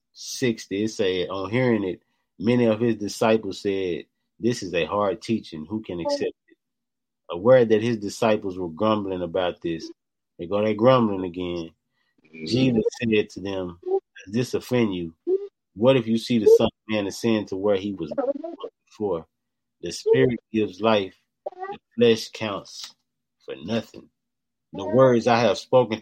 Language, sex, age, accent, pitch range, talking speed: English, male, 30-49, American, 95-130 Hz, 160 wpm